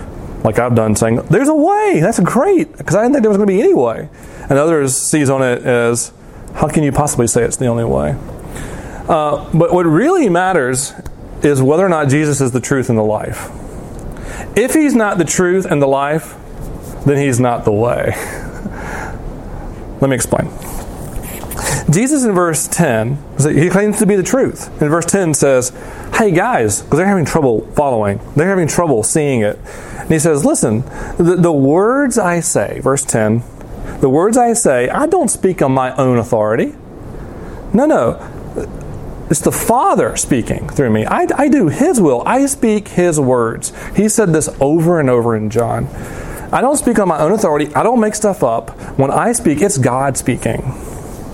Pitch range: 125-190 Hz